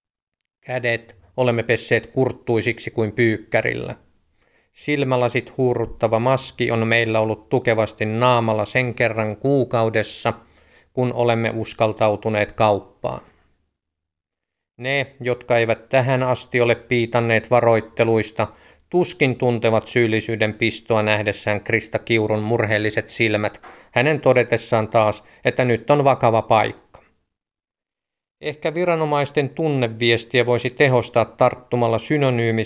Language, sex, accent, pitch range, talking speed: Finnish, male, native, 110-125 Hz, 95 wpm